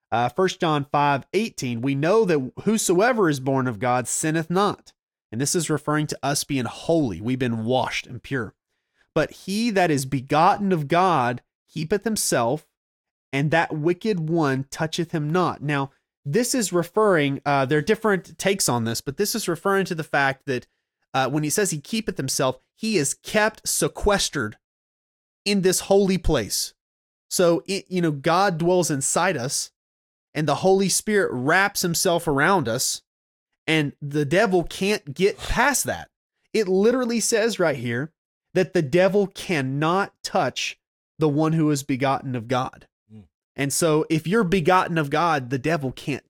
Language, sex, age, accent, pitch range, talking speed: English, male, 30-49, American, 135-190 Hz, 165 wpm